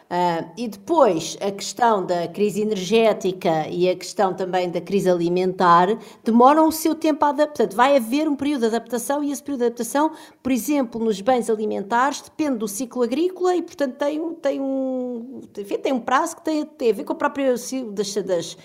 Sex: female